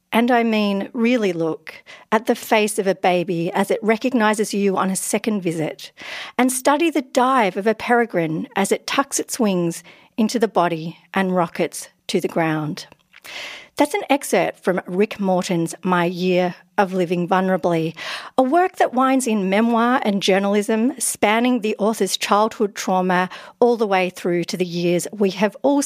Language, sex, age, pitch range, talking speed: English, female, 50-69, 185-245 Hz, 170 wpm